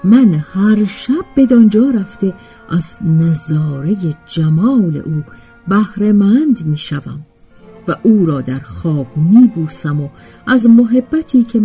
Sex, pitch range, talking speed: female, 155-235 Hz, 120 wpm